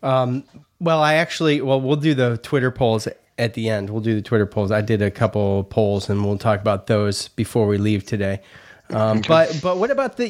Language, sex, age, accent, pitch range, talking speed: English, male, 30-49, American, 115-155 Hz, 225 wpm